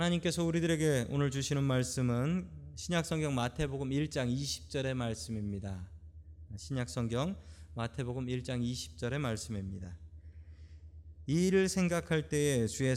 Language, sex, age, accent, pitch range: Korean, male, 20-39, native, 100-145 Hz